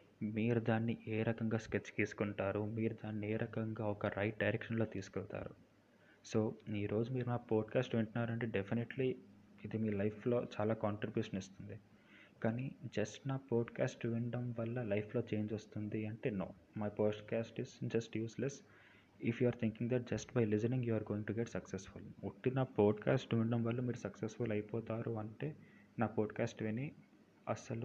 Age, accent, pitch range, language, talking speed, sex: 20-39, native, 105-120 Hz, Telugu, 105 wpm, male